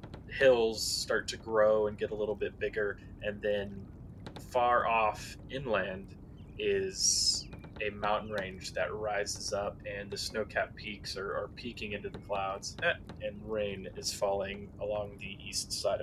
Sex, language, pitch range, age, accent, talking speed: male, English, 100-120 Hz, 20-39, American, 150 wpm